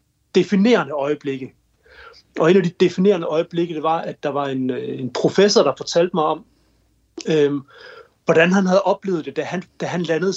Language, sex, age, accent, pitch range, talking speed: Danish, male, 30-49, native, 150-195 Hz, 170 wpm